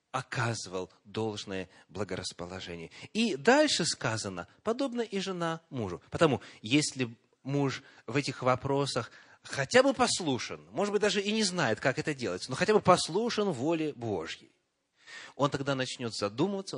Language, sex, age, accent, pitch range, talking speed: Russian, male, 30-49, native, 115-195 Hz, 135 wpm